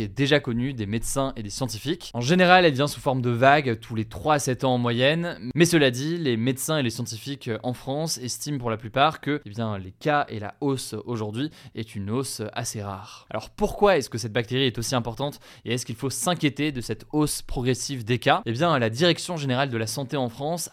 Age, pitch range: 20-39, 115-145 Hz